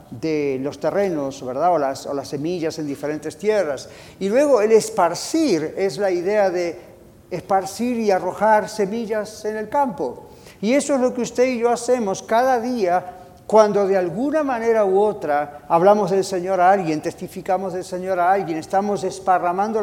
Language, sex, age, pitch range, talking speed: Spanish, male, 50-69, 175-225 Hz, 170 wpm